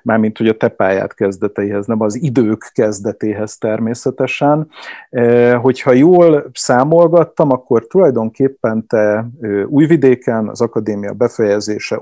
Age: 50-69